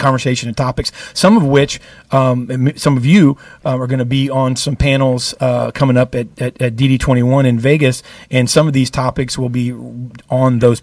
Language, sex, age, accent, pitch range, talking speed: English, male, 40-59, American, 125-145 Hz, 210 wpm